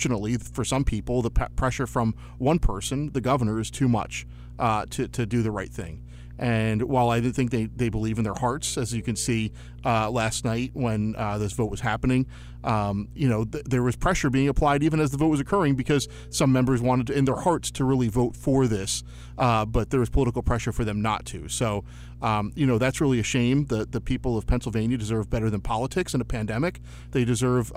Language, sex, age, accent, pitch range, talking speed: English, male, 40-59, American, 110-130 Hz, 230 wpm